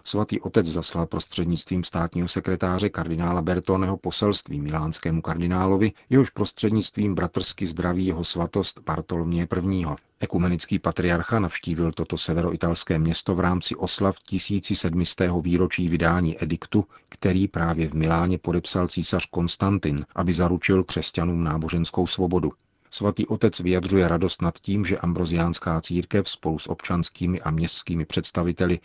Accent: native